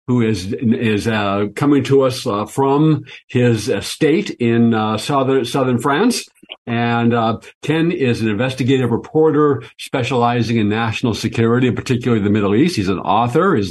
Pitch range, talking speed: 115-135 Hz, 155 wpm